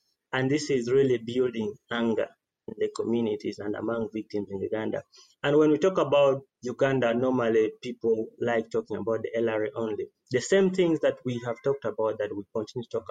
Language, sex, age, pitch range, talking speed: English, male, 30-49, 110-140 Hz, 190 wpm